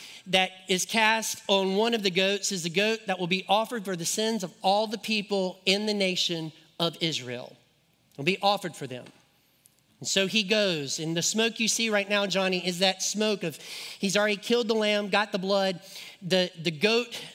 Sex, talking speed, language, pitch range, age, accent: male, 205 wpm, English, 145-190 Hz, 40-59, American